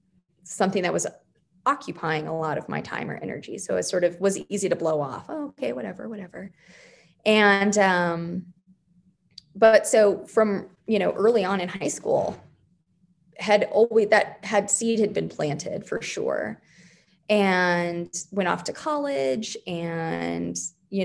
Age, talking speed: 20-39, 155 wpm